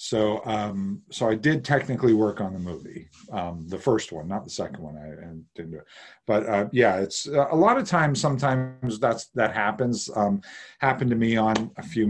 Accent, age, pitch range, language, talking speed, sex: American, 50-69, 95-115 Hz, English, 215 wpm, male